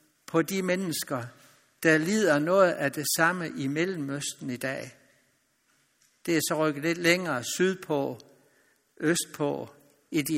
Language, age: Danish, 60-79